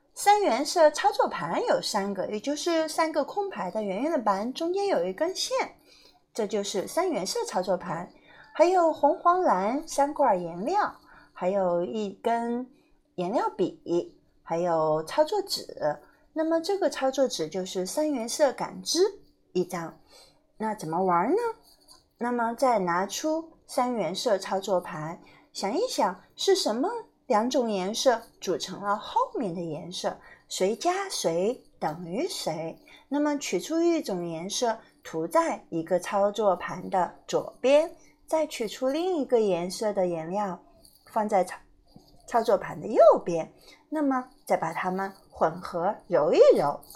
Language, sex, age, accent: Chinese, female, 30-49, native